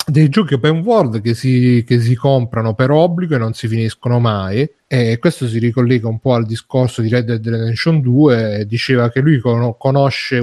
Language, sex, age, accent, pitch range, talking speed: Italian, male, 30-49, native, 125-160 Hz, 190 wpm